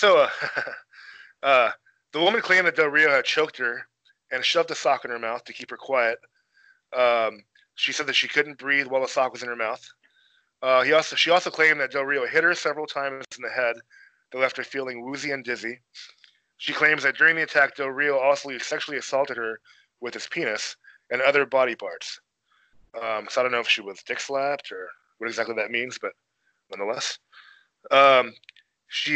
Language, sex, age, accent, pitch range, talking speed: English, male, 20-39, American, 125-160 Hz, 200 wpm